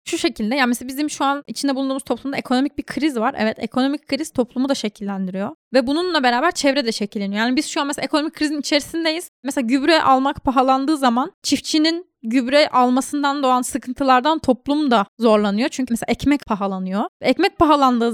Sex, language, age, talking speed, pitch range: female, Turkish, 10-29, 180 wpm, 225-280 Hz